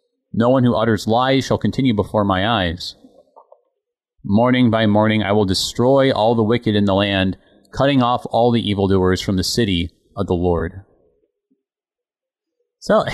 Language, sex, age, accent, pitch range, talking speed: English, male, 30-49, American, 95-120 Hz, 155 wpm